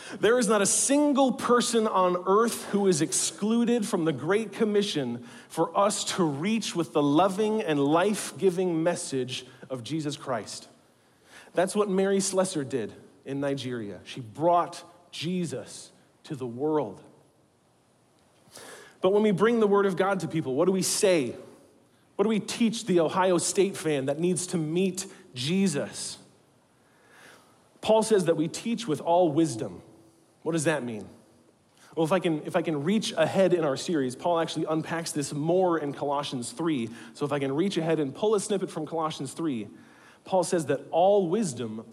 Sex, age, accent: male, 40-59, American